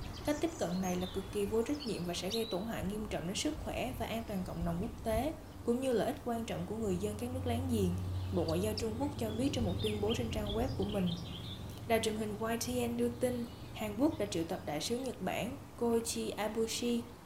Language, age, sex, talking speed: Vietnamese, 20-39, female, 255 wpm